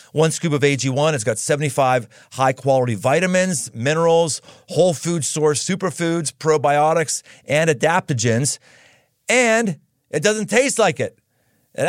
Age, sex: 40-59, male